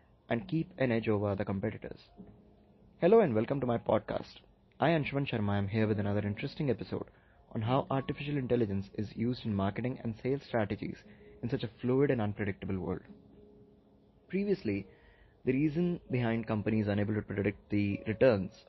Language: English